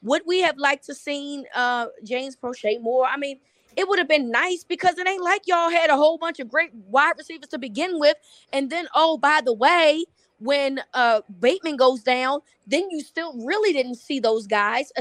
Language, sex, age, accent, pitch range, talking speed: English, female, 20-39, American, 225-300 Hz, 210 wpm